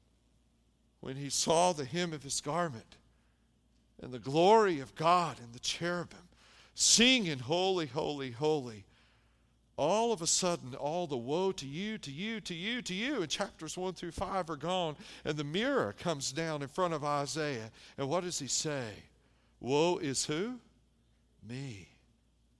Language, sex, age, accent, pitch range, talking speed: English, male, 50-69, American, 135-210 Hz, 160 wpm